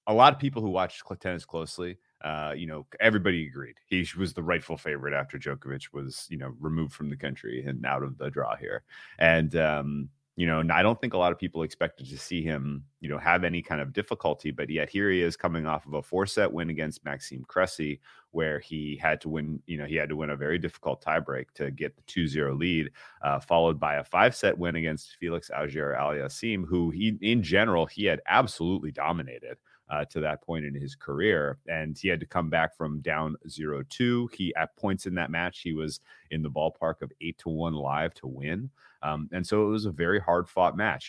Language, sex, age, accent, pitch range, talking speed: English, male, 30-49, American, 75-95 Hz, 225 wpm